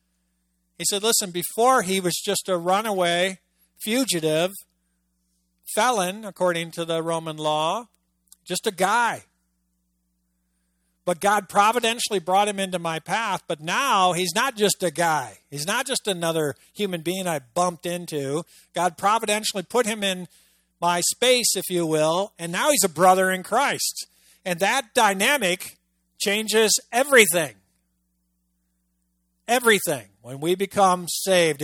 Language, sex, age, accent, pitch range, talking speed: English, male, 50-69, American, 135-190 Hz, 135 wpm